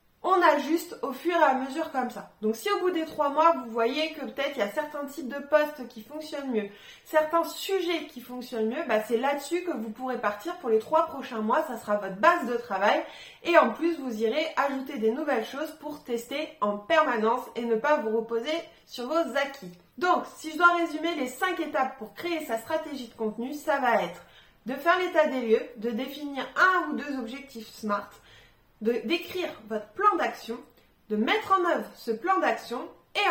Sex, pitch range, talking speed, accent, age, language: female, 230-320 Hz, 210 wpm, French, 20-39, French